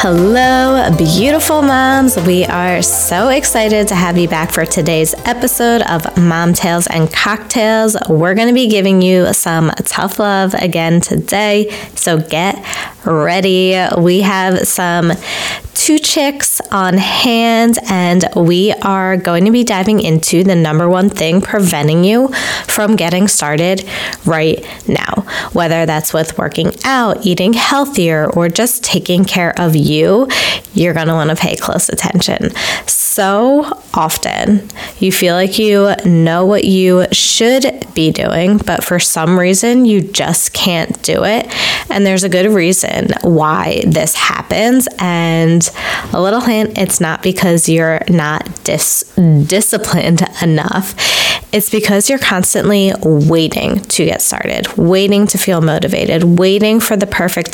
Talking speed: 140 wpm